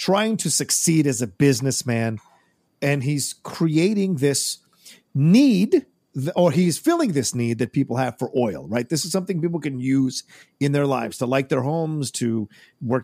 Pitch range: 120-150 Hz